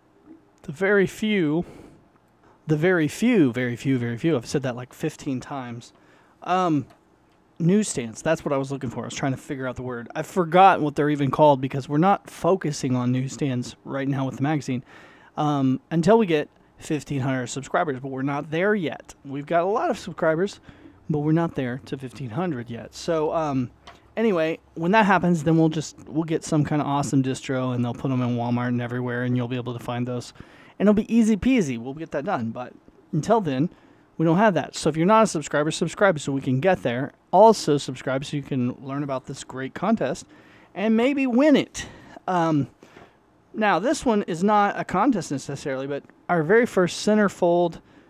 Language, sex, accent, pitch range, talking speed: English, male, American, 130-180 Hz, 200 wpm